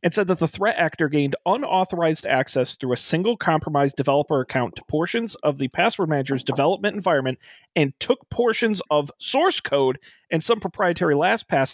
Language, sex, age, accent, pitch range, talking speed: English, male, 40-59, American, 135-195 Hz, 170 wpm